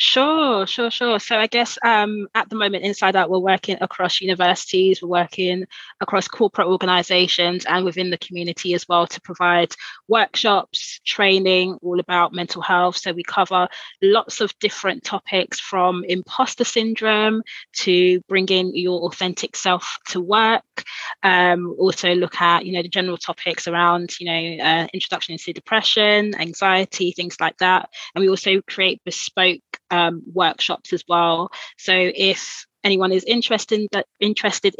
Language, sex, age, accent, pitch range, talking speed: English, female, 20-39, British, 175-200 Hz, 155 wpm